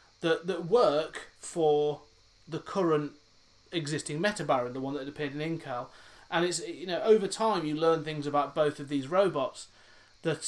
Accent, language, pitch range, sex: British, English, 150-190 Hz, male